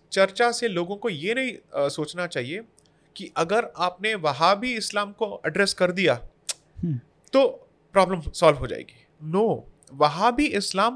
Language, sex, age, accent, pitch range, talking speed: Hindi, male, 30-49, native, 155-240 Hz, 135 wpm